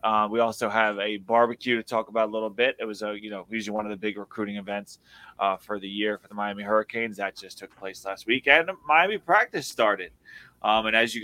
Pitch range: 105-120 Hz